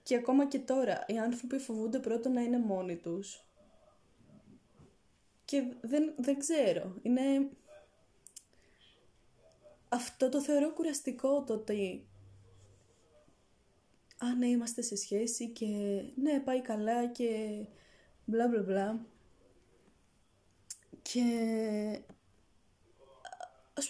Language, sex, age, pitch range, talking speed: Greek, female, 20-39, 185-255 Hz, 95 wpm